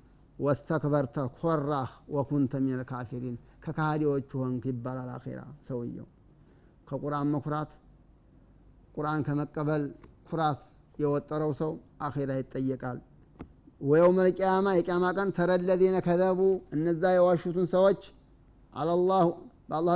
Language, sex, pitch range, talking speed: Amharic, male, 135-180 Hz, 95 wpm